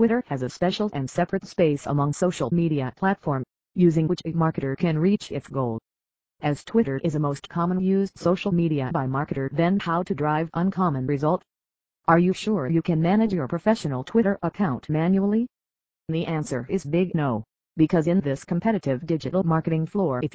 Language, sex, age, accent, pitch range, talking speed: English, female, 40-59, American, 140-185 Hz, 175 wpm